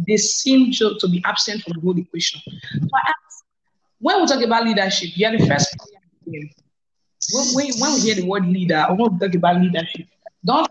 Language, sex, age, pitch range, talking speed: English, female, 20-39, 175-225 Hz, 195 wpm